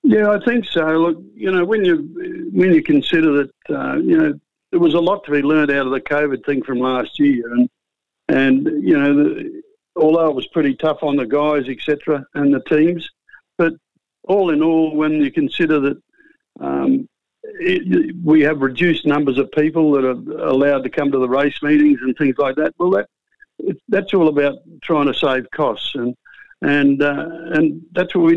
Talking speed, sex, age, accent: 200 wpm, male, 60-79, Australian